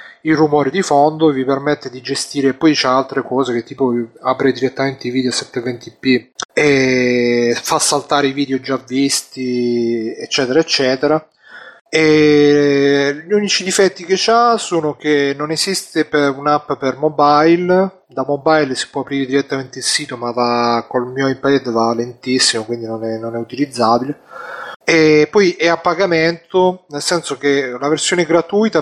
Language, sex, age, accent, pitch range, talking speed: Italian, male, 30-49, native, 125-150 Hz, 155 wpm